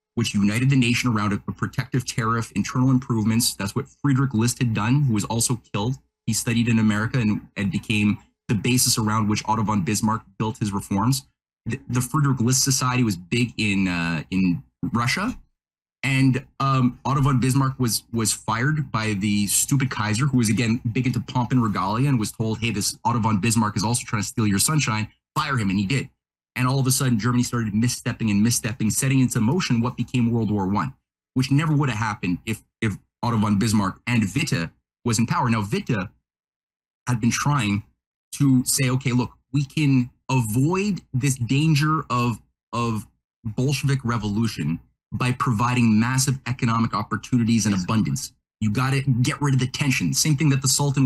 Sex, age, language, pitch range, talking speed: male, 30-49, English, 110-130 Hz, 185 wpm